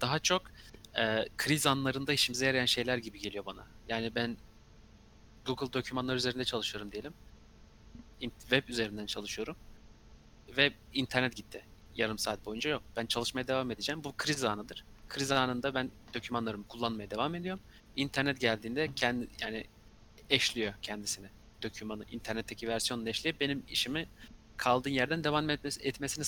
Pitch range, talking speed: 110-135 Hz, 130 wpm